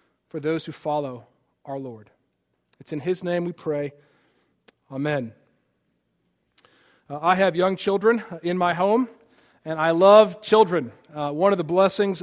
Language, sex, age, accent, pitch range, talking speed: English, male, 40-59, American, 155-190 Hz, 145 wpm